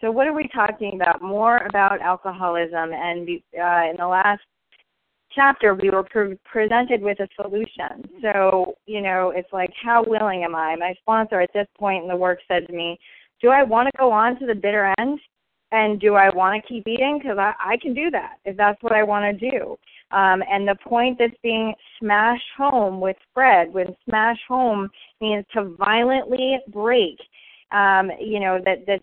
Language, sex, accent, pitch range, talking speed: English, female, American, 195-240 Hz, 195 wpm